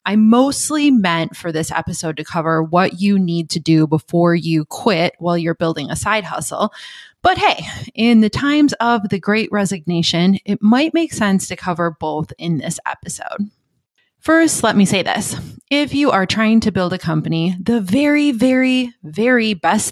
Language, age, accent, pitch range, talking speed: English, 20-39, American, 170-225 Hz, 180 wpm